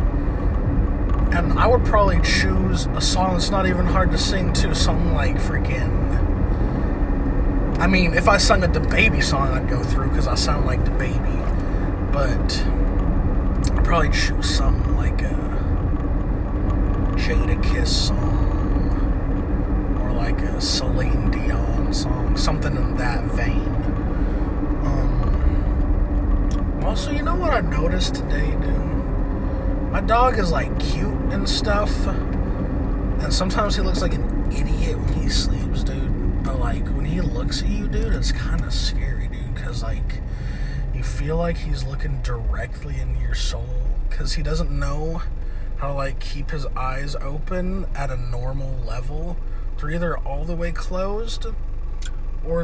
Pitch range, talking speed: 85-100 Hz, 145 wpm